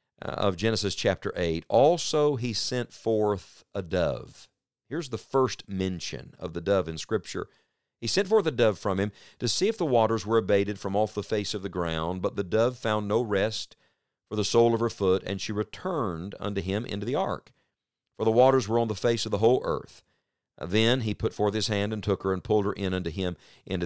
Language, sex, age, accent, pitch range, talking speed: English, male, 50-69, American, 100-115 Hz, 220 wpm